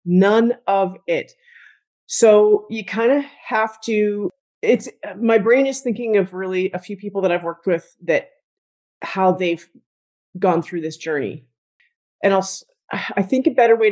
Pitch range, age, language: 165-210 Hz, 30-49, English